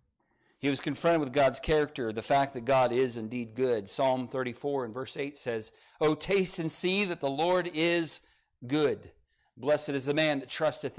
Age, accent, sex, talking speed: 40-59, American, male, 185 wpm